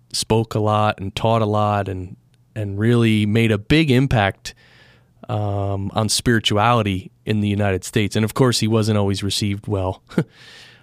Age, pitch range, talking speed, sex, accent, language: 30-49, 105-125 Hz, 165 wpm, male, American, English